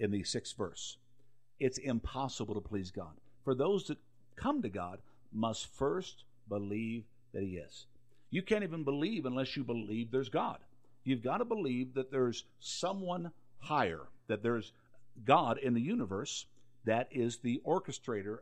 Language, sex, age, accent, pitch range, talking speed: English, male, 50-69, American, 110-140 Hz, 155 wpm